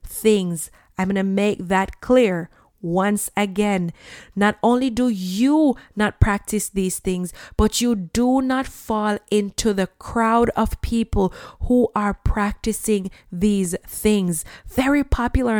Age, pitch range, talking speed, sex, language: 20-39, 195-235 Hz, 130 wpm, female, English